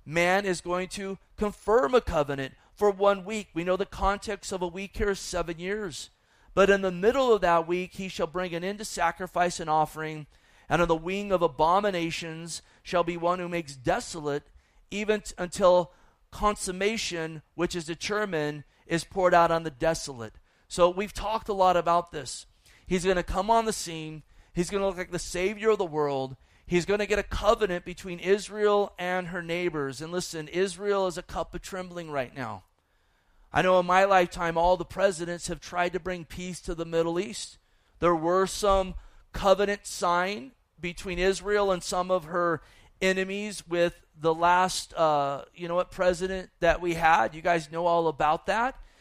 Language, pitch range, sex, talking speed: English, 165-195 Hz, male, 185 wpm